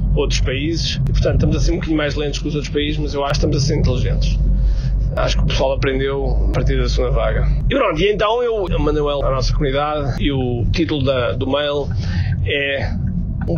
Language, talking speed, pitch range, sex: Portuguese, 220 wpm, 130-175 Hz, male